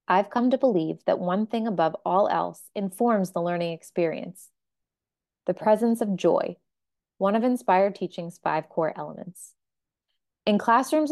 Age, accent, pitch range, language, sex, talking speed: 20-39, American, 180-230 Hz, English, female, 145 wpm